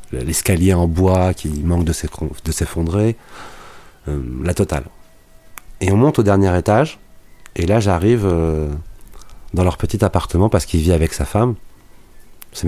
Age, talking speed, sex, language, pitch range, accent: 30-49, 145 wpm, male, French, 85-105 Hz, French